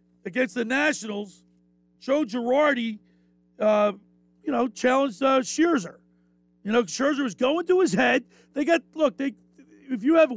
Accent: American